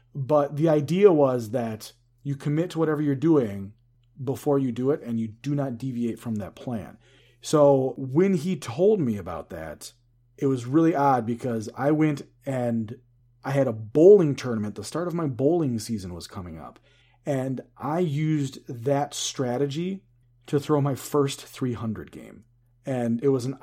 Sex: male